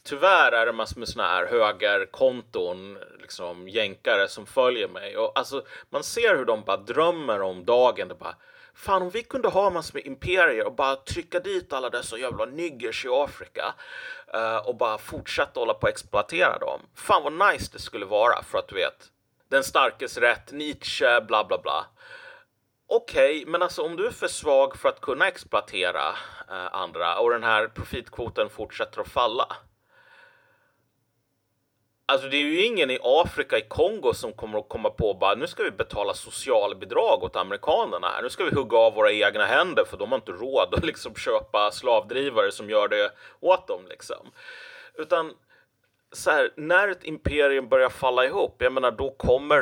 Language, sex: Swedish, male